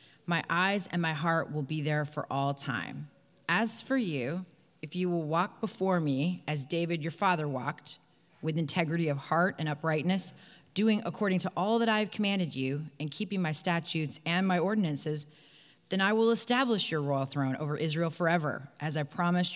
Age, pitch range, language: 30-49, 140-180 Hz, English